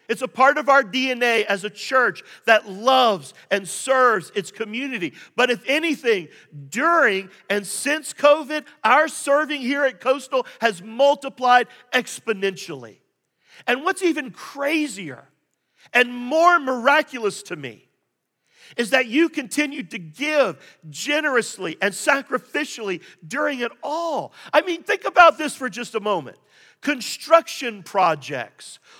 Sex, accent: male, American